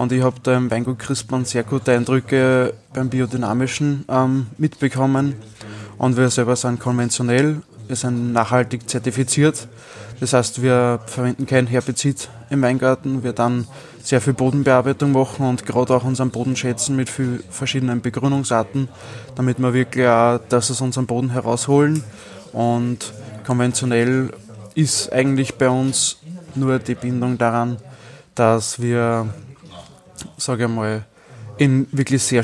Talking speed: 130 wpm